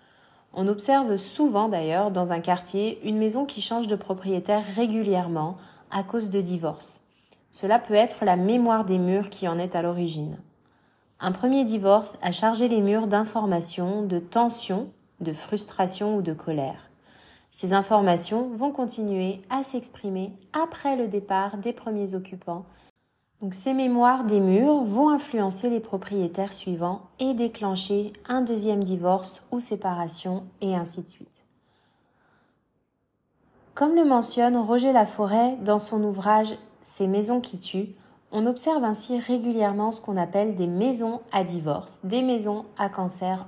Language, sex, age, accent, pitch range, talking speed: French, female, 20-39, French, 185-235 Hz, 145 wpm